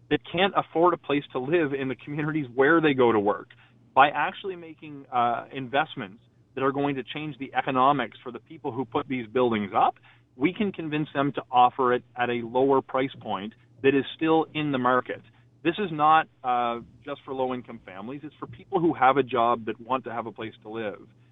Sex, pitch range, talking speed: male, 125-150 Hz, 215 wpm